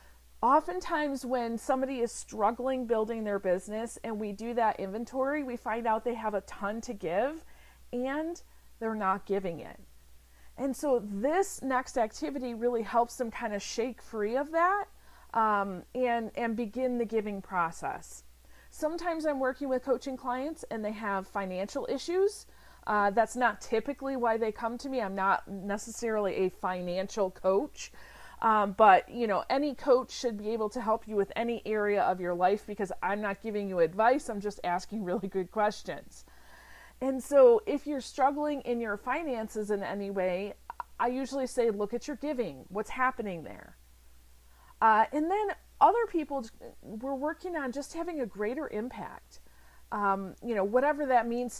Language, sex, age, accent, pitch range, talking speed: English, female, 40-59, American, 200-260 Hz, 165 wpm